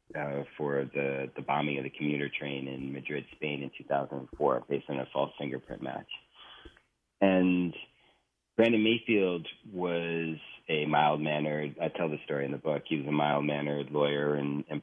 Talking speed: 160 wpm